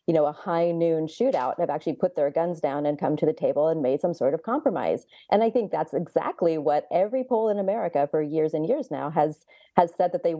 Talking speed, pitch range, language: 250 wpm, 150-180 Hz, English